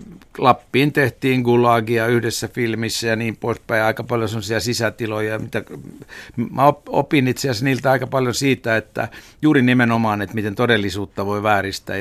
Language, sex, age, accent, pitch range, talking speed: Finnish, male, 60-79, native, 95-115 Hz, 145 wpm